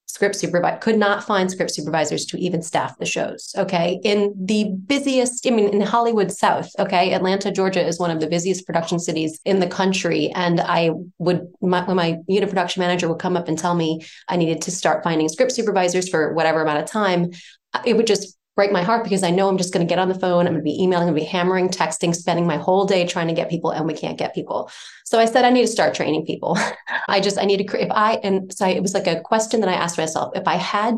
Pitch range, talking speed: 175-215 Hz, 255 wpm